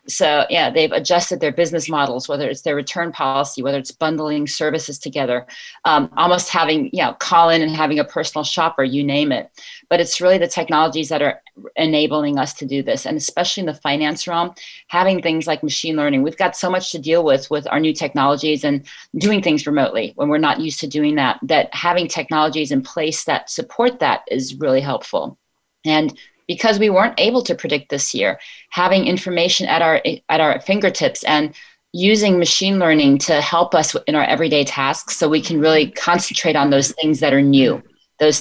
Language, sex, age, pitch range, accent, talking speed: English, female, 40-59, 145-175 Hz, American, 200 wpm